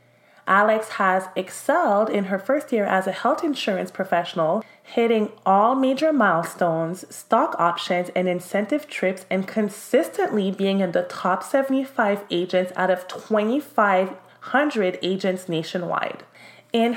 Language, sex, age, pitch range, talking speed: English, female, 30-49, 185-230 Hz, 125 wpm